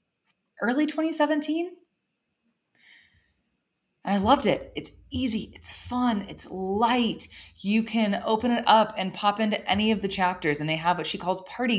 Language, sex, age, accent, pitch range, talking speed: English, female, 20-39, American, 140-195 Hz, 160 wpm